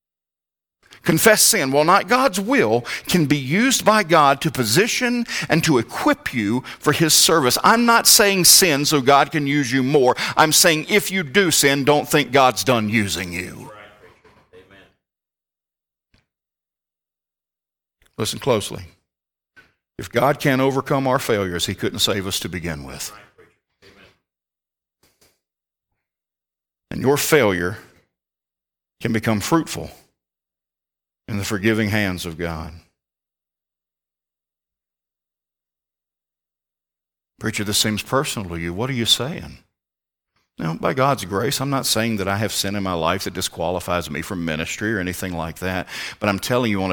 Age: 50-69